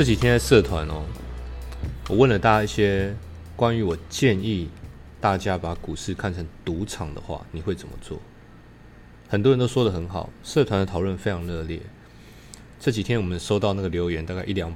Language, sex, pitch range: Chinese, male, 85-115 Hz